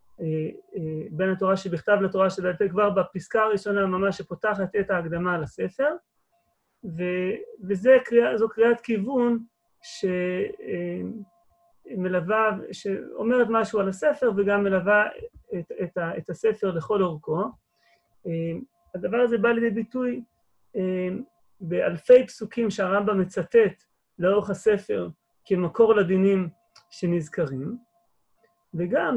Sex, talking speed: male, 105 wpm